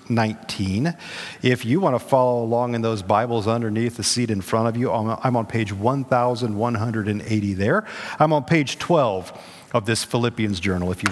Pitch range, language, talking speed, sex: 100-145 Hz, English, 175 wpm, male